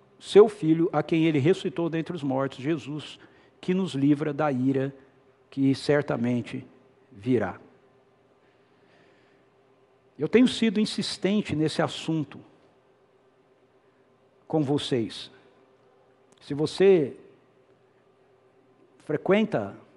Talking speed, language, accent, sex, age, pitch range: 85 wpm, Portuguese, Brazilian, male, 60-79, 130-195 Hz